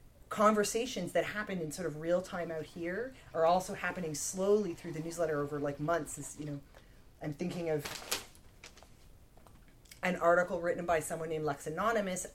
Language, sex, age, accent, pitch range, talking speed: English, female, 30-49, American, 145-175 Hz, 165 wpm